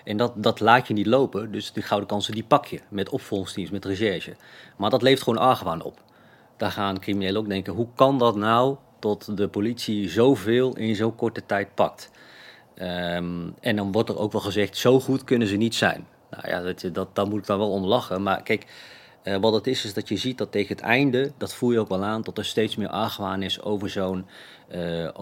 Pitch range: 100-115 Hz